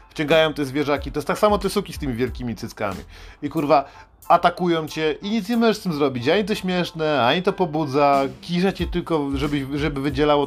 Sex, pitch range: male, 125-165 Hz